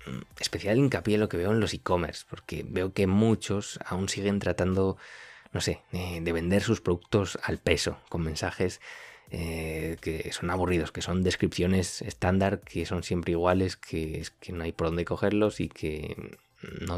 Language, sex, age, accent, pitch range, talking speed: Spanish, male, 20-39, Spanish, 85-100 Hz, 165 wpm